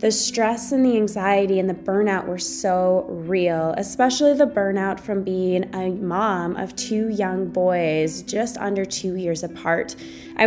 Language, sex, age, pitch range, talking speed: English, female, 20-39, 185-245 Hz, 160 wpm